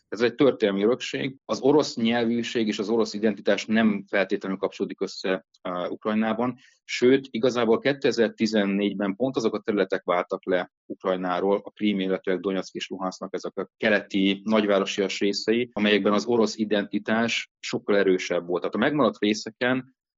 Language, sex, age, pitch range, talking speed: Hungarian, male, 30-49, 95-110 Hz, 145 wpm